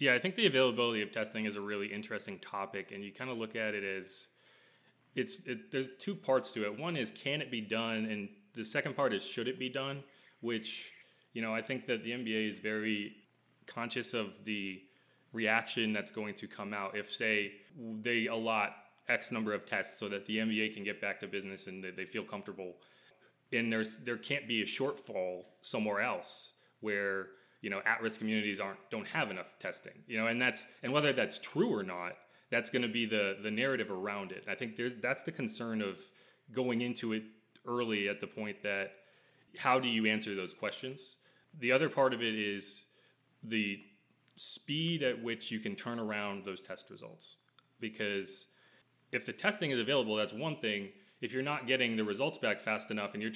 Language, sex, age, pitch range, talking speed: English, male, 20-39, 100-125 Hz, 200 wpm